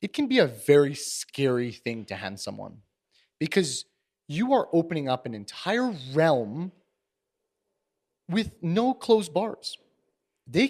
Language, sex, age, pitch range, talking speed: English, male, 30-49, 120-195 Hz, 130 wpm